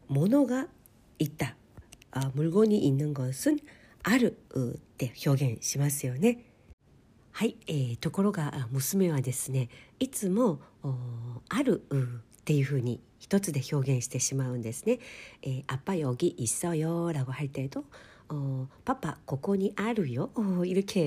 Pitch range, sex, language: 135-195 Hz, female, Korean